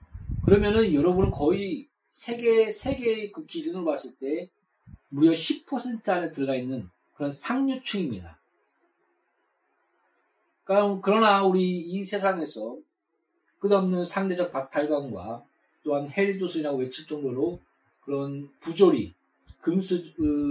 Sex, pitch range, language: male, 150-205 Hz, Korean